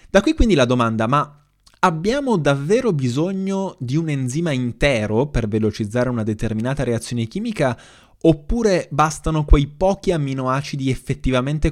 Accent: native